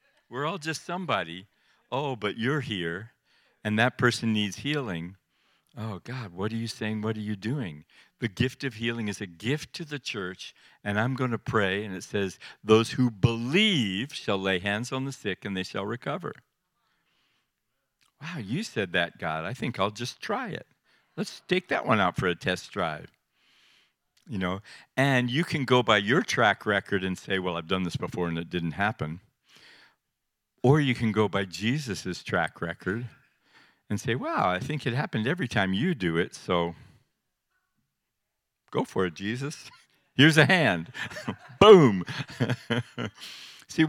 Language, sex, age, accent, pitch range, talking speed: English, male, 60-79, American, 95-135 Hz, 170 wpm